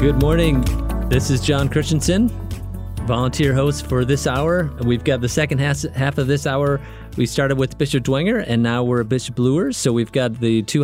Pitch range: 110-140 Hz